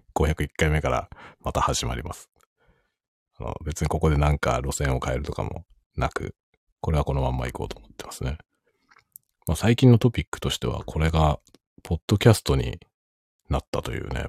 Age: 40-59